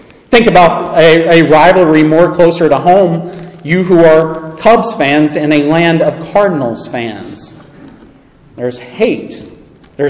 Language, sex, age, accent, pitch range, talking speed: English, male, 40-59, American, 145-185 Hz, 145 wpm